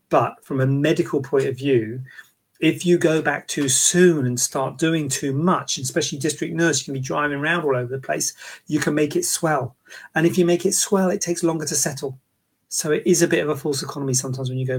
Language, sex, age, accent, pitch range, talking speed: English, male, 40-59, British, 130-165 Hz, 240 wpm